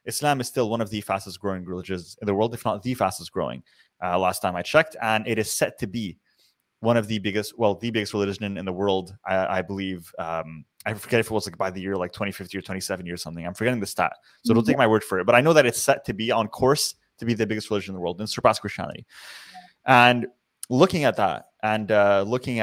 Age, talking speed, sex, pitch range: 20-39, 260 wpm, male, 100-120 Hz